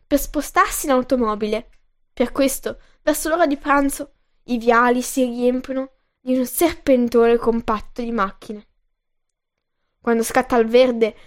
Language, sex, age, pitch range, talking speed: Italian, female, 10-29, 235-290 Hz, 130 wpm